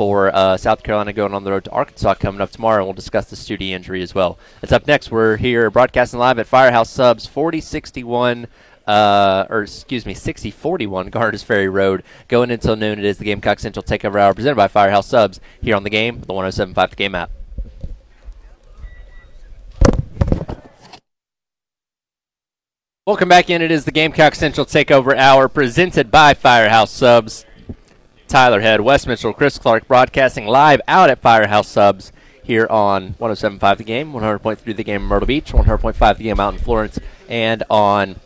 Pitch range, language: 100-125 Hz, English